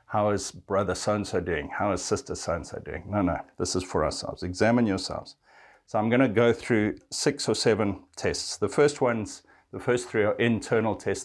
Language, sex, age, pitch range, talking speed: English, male, 60-79, 95-115 Hz, 195 wpm